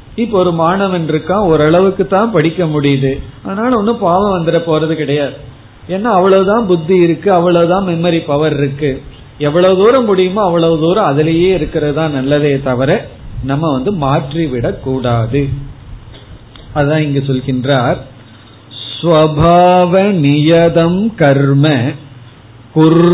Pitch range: 135-175 Hz